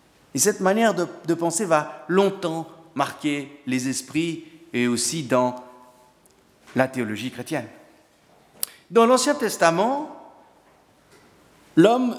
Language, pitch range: French, 145-210 Hz